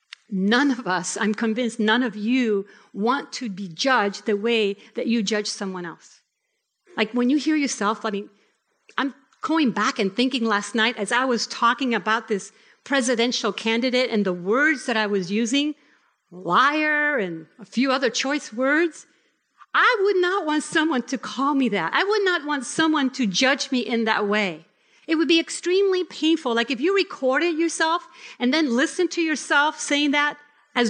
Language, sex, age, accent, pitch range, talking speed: English, female, 50-69, American, 225-310 Hz, 180 wpm